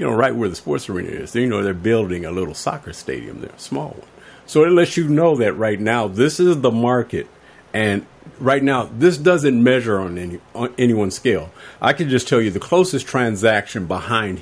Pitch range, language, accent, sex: 105-135 Hz, English, American, male